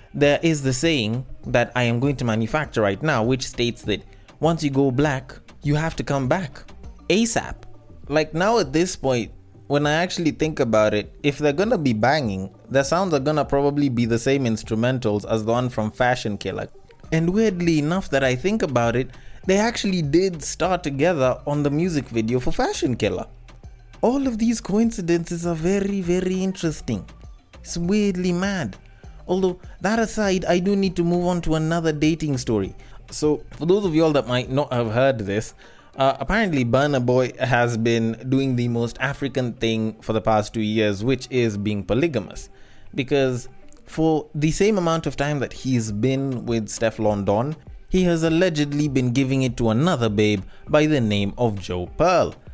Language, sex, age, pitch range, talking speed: English, male, 20-39, 115-165 Hz, 185 wpm